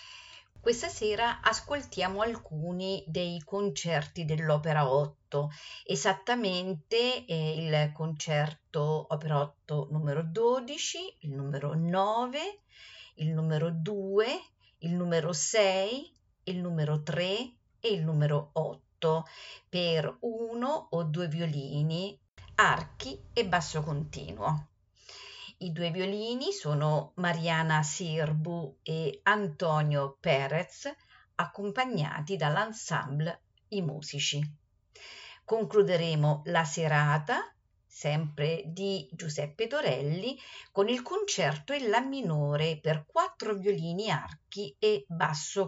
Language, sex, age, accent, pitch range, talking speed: Italian, female, 50-69, native, 150-200 Hz, 95 wpm